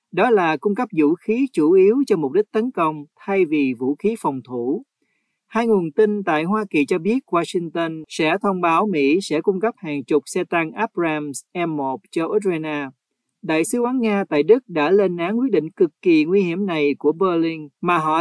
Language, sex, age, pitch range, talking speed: Vietnamese, male, 40-59, 155-220 Hz, 210 wpm